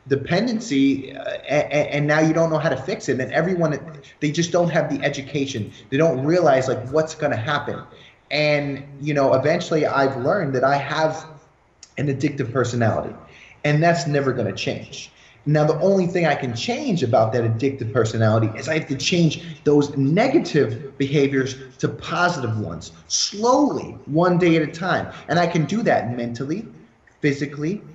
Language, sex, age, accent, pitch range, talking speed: English, male, 20-39, American, 135-170 Hz, 165 wpm